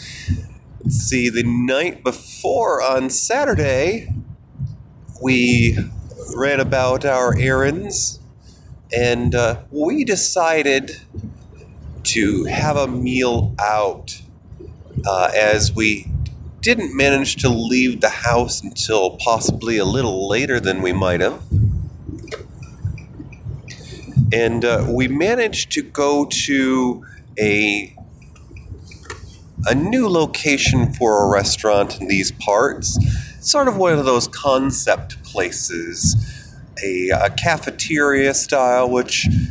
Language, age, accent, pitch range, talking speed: English, 30-49, American, 110-130 Hz, 100 wpm